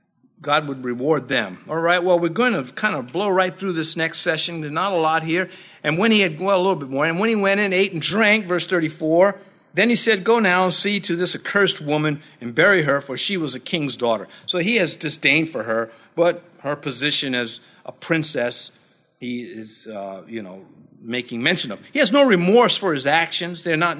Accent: American